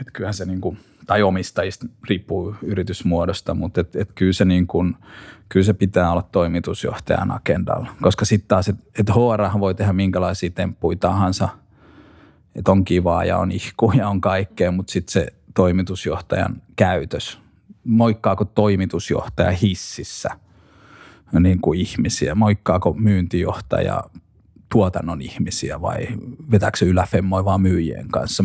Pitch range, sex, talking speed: 90-105 Hz, male, 125 wpm